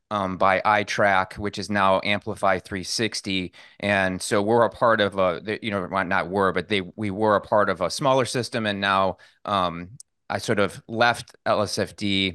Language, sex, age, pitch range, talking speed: English, male, 30-49, 95-115 Hz, 180 wpm